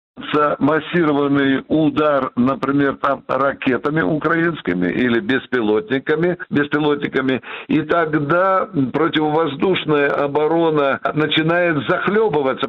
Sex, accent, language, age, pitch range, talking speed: male, native, Russian, 60-79, 140-180 Hz, 70 wpm